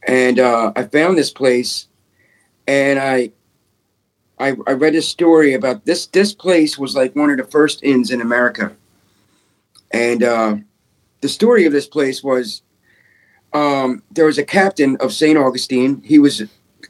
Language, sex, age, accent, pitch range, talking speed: English, male, 50-69, American, 120-150 Hz, 160 wpm